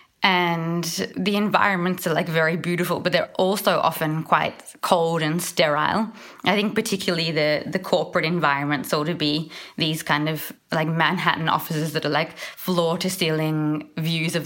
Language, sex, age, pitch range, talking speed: English, female, 20-39, 155-175 Hz, 160 wpm